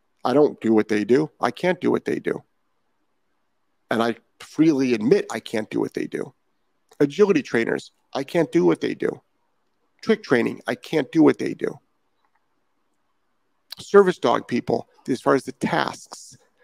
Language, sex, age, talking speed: English, male, 50-69, 165 wpm